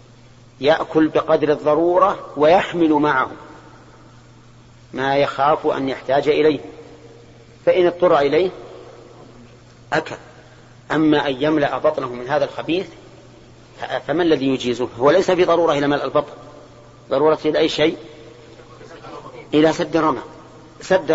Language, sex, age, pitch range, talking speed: Arabic, male, 40-59, 120-155 Hz, 110 wpm